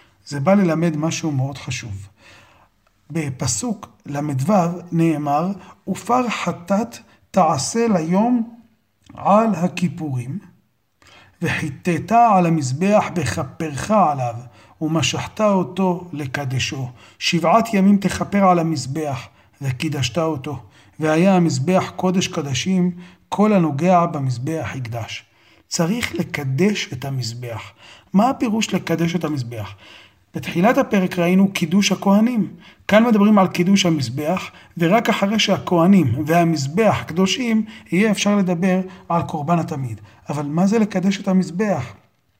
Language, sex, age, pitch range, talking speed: Hebrew, male, 40-59, 145-195 Hz, 105 wpm